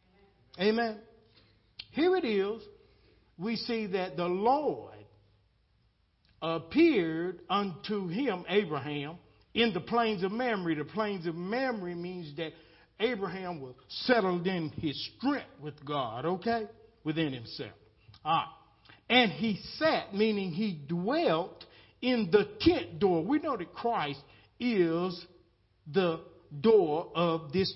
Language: English